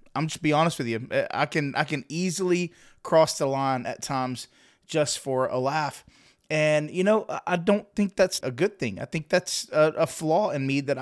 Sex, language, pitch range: male, English, 150-195 Hz